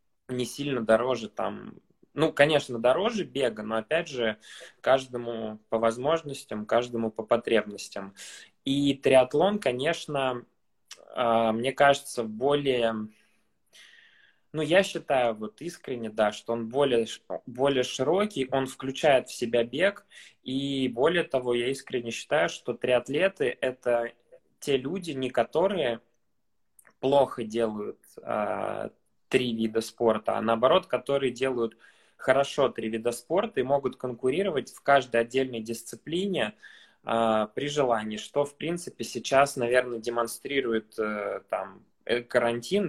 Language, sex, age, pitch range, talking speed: Russian, male, 20-39, 115-140 Hz, 120 wpm